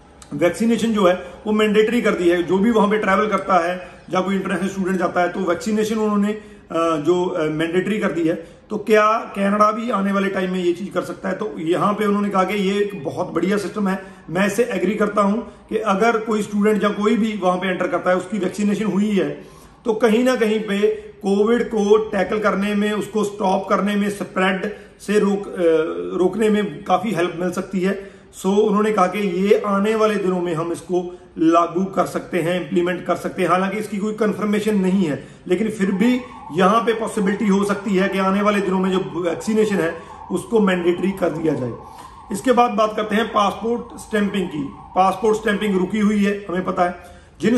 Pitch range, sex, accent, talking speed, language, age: 180-215 Hz, male, native, 205 wpm, Hindi, 40-59